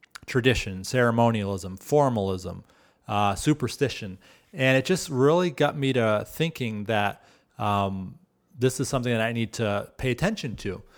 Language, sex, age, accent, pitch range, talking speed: English, male, 30-49, American, 110-140 Hz, 135 wpm